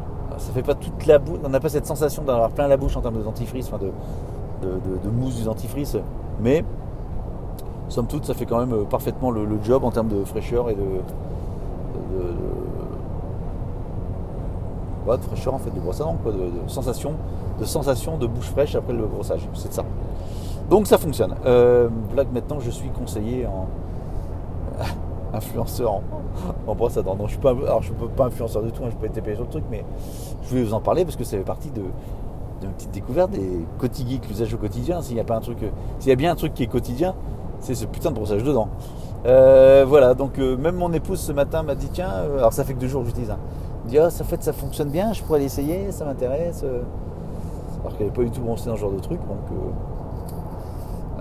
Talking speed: 225 wpm